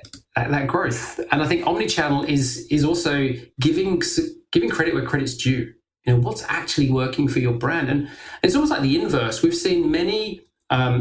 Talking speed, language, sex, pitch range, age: 180 wpm, English, male, 120-155 Hz, 30-49